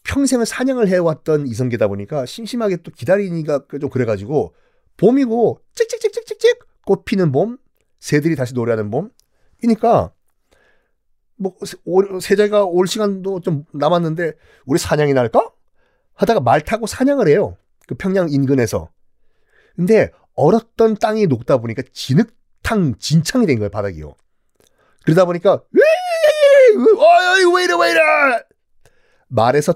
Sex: male